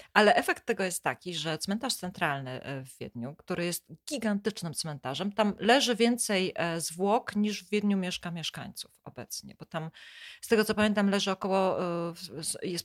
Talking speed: 155 wpm